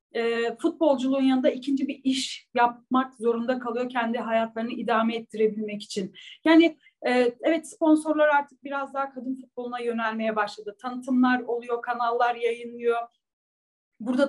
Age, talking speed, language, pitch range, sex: 40-59, 120 wpm, Turkish, 245-290 Hz, female